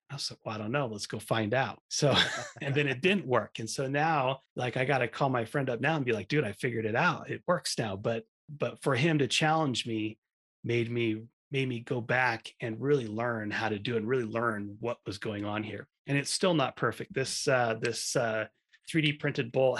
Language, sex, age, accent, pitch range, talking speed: English, male, 30-49, American, 110-130 Hz, 240 wpm